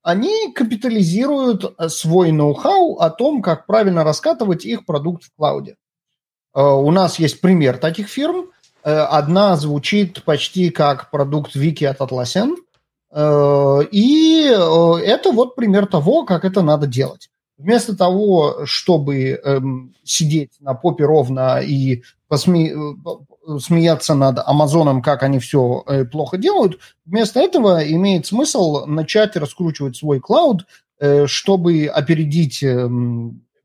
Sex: male